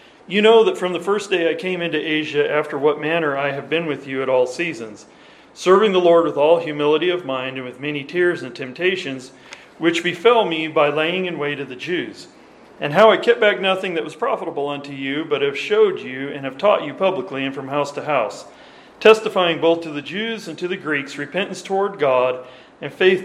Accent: American